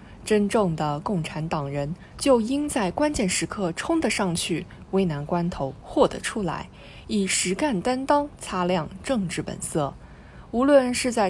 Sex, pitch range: female, 160-240 Hz